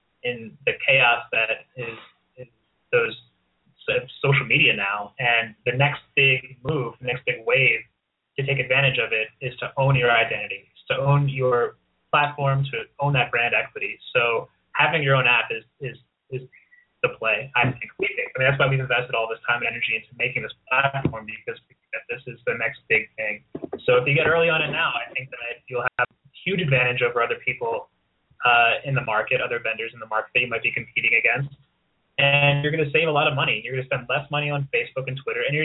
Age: 20-39